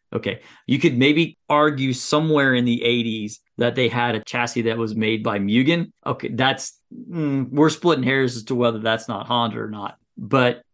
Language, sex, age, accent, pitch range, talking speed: English, male, 40-59, American, 115-145 Hz, 190 wpm